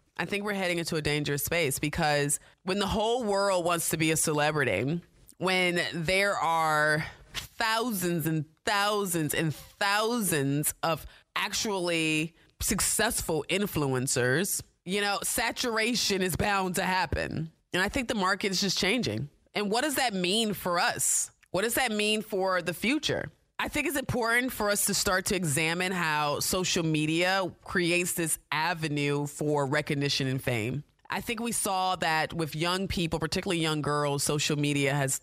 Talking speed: 160 wpm